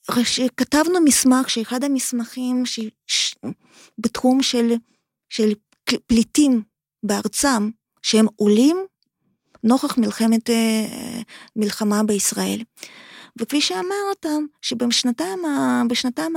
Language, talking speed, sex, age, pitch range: Hebrew, 70 wpm, female, 20-39, 225-285 Hz